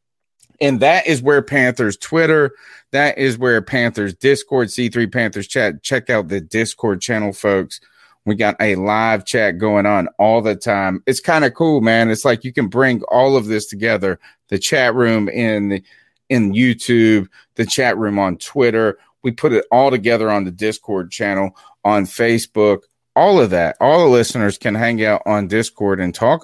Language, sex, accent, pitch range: English, male, American, 100-130 Hz